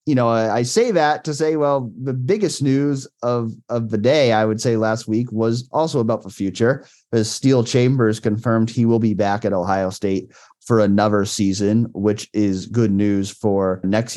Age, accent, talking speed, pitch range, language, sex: 30-49, American, 190 wpm, 95-115 Hz, English, male